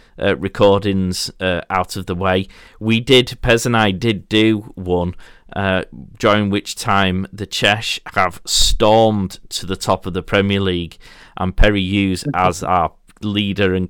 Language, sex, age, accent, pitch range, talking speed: English, male, 30-49, British, 90-105 Hz, 160 wpm